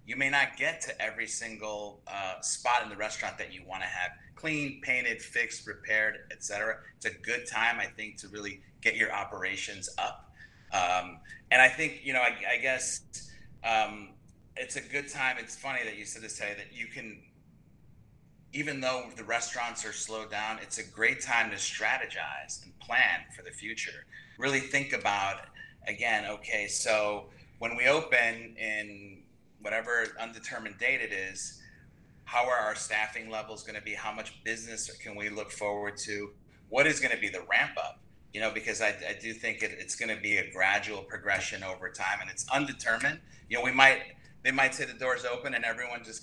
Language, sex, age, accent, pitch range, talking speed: English, male, 30-49, American, 105-130 Hz, 190 wpm